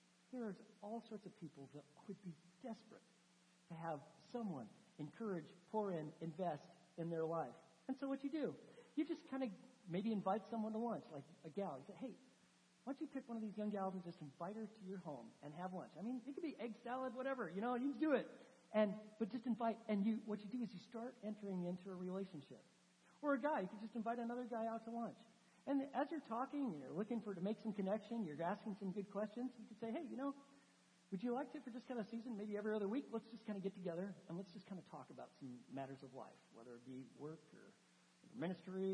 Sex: male